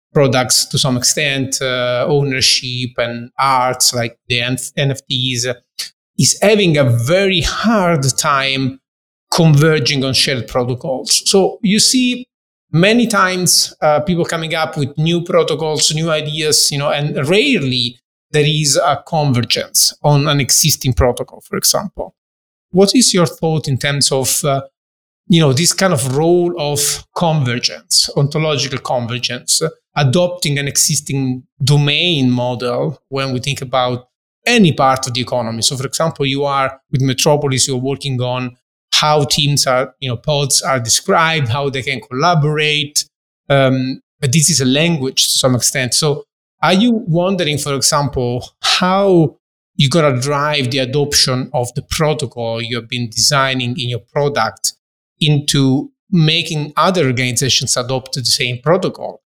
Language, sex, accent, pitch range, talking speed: English, male, Italian, 130-160 Hz, 145 wpm